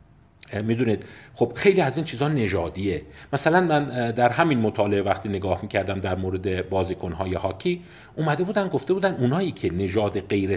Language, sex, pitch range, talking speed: Persian, male, 95-135 Hz, 160 wpm